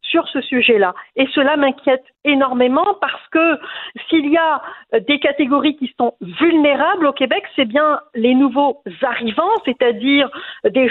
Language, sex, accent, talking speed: French, female, French, 145 wpm